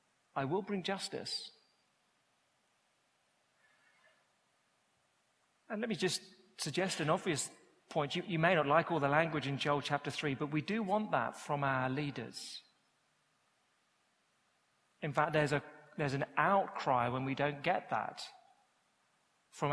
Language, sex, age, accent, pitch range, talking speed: English, male, 40-59, British, 140-180 Hz, 135 wpm